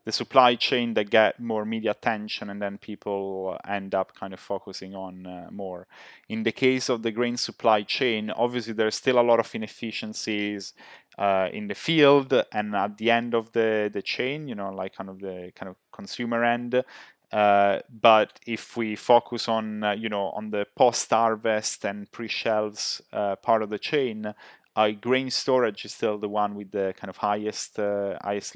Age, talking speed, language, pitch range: 20-39, 185 wpm, English, 100-115 Hz